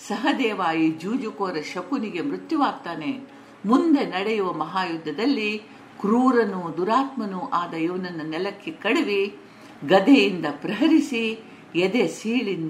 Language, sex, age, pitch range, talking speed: Kannada, female, 50-69, 170-265 Hz, 85 wpm